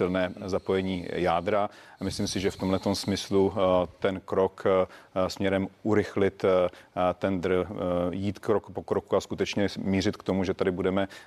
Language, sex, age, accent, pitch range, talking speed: Czech, male, 40-59, native, 95-100 Hz, 145 wpm